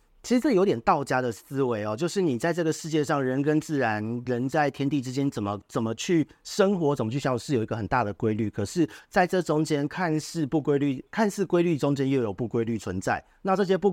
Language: Chinese